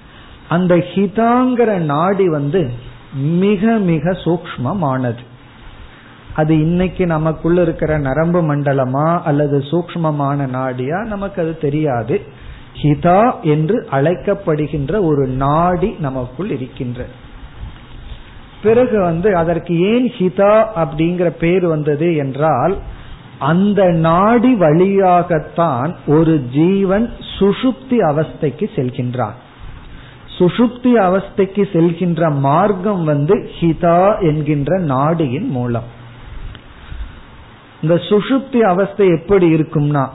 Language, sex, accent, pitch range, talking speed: Tamil, male, native, 140-190 Hz, 80 wpm